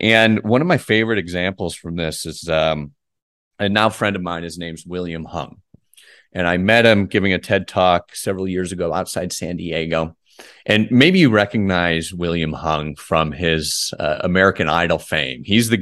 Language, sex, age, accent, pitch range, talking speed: English, male, 30-49, American, 90-115 Hz, 180 wpm